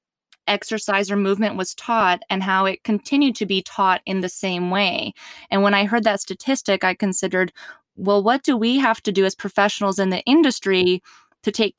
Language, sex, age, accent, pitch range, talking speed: English, female, 20-39, American, 190-230 Hz, 195 wpm